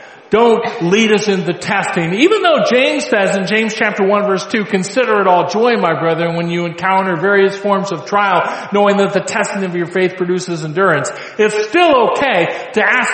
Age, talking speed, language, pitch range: 40-59, 190 wpm, English, 185-230 Hz